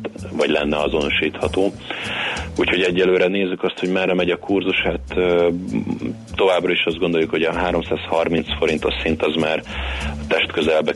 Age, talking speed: 30-49, 135 wpm